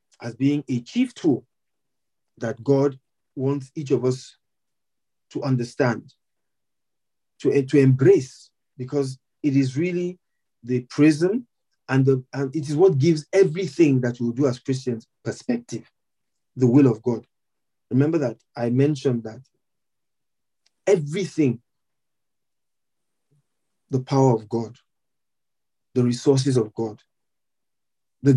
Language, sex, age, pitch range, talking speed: English, male, 50-69, 125-155 Hz, 115 wpm